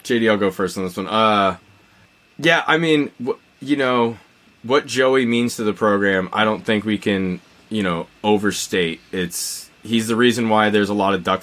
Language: English